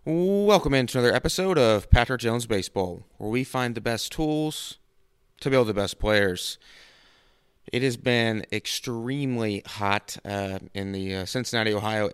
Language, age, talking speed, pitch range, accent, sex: English, 20-39, 155 wpm, 100-115 Hz, American, male